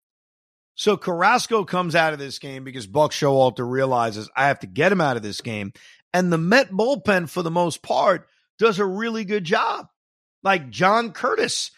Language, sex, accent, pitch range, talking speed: English, male, American, 130-175 Hz, 185 wpm